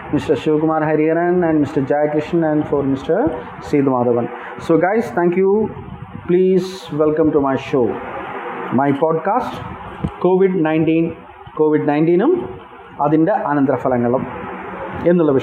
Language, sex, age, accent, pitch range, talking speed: English, male, 30-49, Indian, 150-195 Hz, 115 wpm